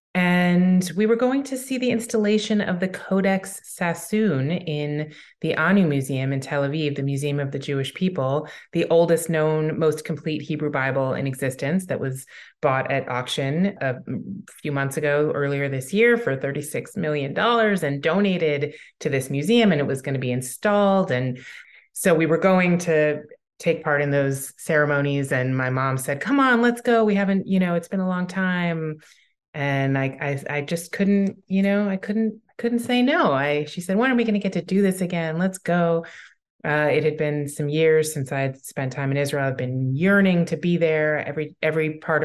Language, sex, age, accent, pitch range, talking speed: English, female, 30-49, American, 140-190 Hz, 195 wpm